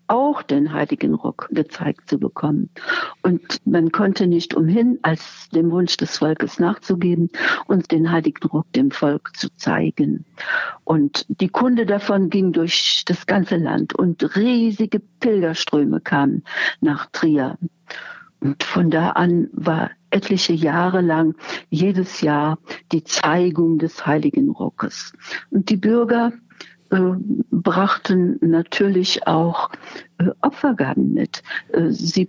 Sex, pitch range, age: female, 165-235 Hz, 60-79